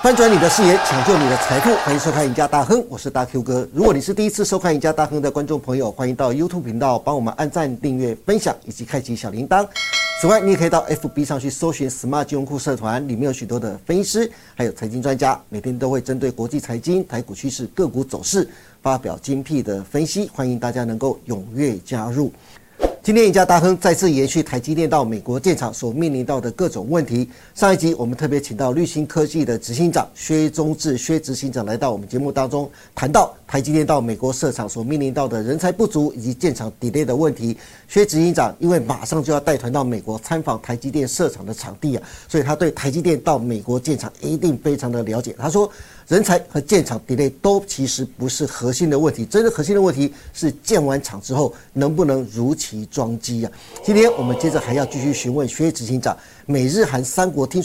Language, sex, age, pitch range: Chinese, male, 50-69, 125-160 Hz